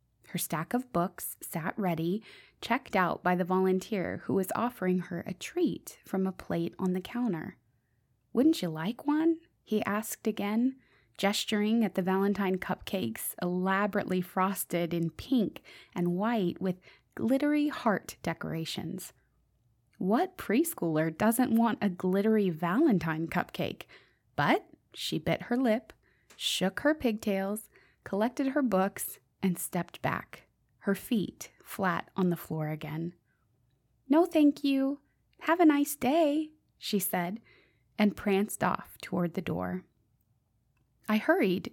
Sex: female